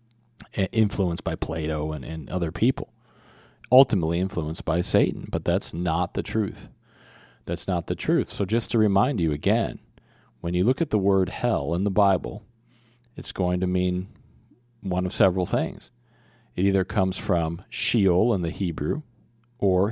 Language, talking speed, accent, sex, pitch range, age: English, 160 wpm, American, male, 85-110 Hz, 40-59